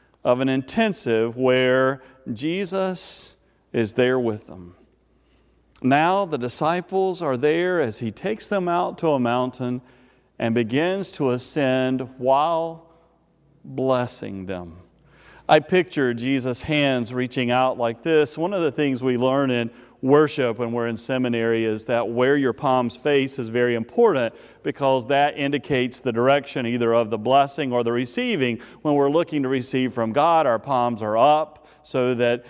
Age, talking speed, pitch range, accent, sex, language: 40-59, 155 wpm, 120-150 Hz, American, male, English